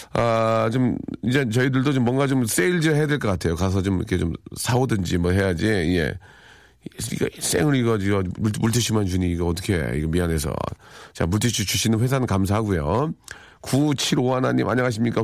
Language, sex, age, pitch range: Korean, male, 40-59, 90-130 Hz